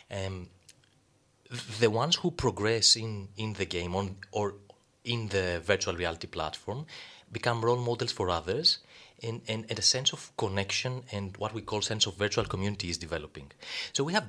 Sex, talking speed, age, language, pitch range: male, 170 wpm, 30-49, English, 95-115 Hz